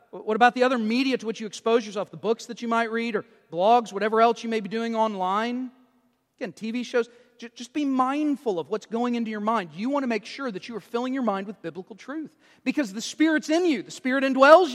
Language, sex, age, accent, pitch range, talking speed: English, male, 40-59, American, 205-255 Hz, 240 wpm